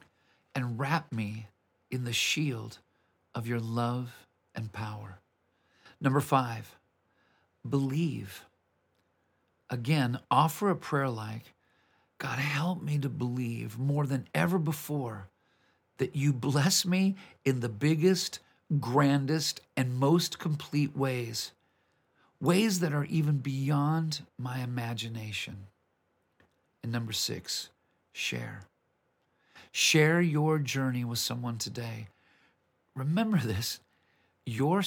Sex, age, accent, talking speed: male, 50-69, American, 105 wpm